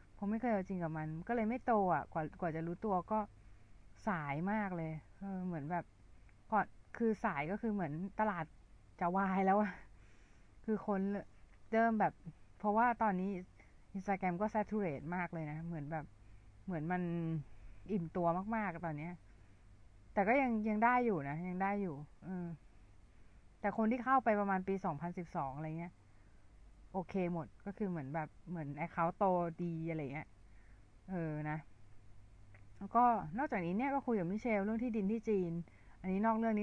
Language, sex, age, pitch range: Thai, female, 30-49, 145-200 Hz